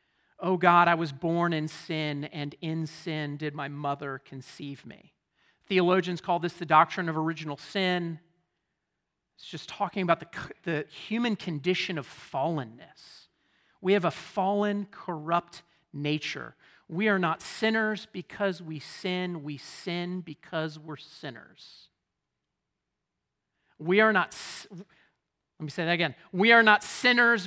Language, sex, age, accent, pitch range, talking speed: English, male, 40-59, American, 160-195 Hz, 140 wpm